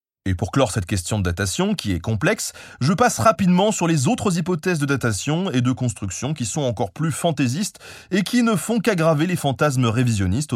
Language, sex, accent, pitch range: French, male, French, 110-170 Hz